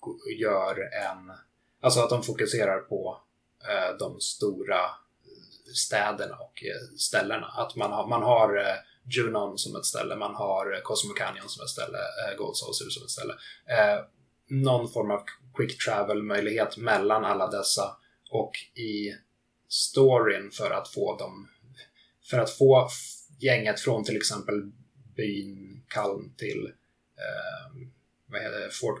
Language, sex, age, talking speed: Swedish, male, 30-49, 120 wpm